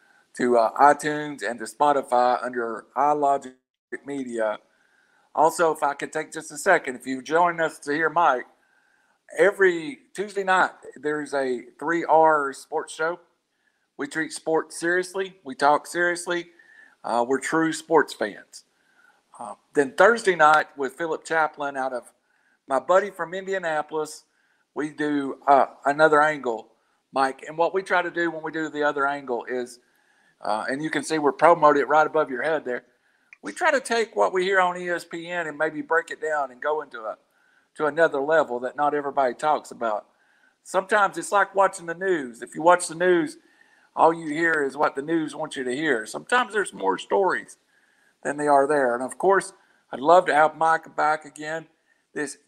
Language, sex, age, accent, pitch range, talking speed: English, male, 50-69, American, 140-175 Hz, 175 wpm